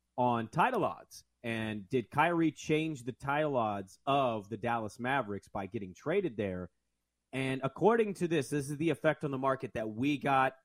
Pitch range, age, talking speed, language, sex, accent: 115-150 Hz, 30-49, 180 wpm, English, male, American